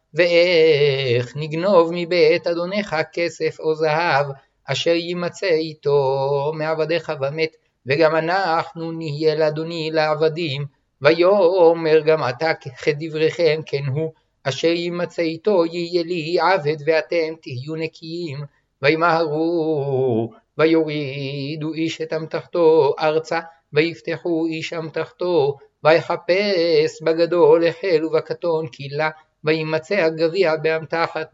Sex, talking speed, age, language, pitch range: male, 95 wpm, 60-79, Hebrew, 150-170 Hz